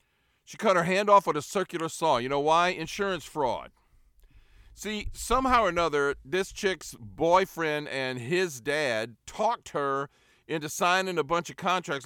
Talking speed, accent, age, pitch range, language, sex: 160 wpm, American, 50-69, 135-180 Hz, English, male